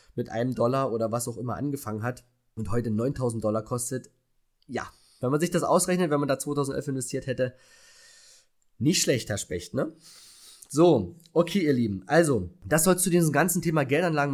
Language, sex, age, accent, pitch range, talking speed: German, male, 20-39, German, 120-155 Hz, 175 wpm